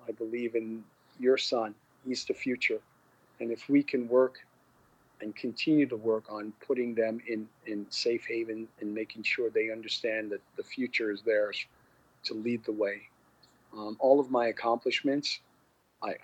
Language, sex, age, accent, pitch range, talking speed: English, male, 40-59, American, 105-120 Hz, 160 wpm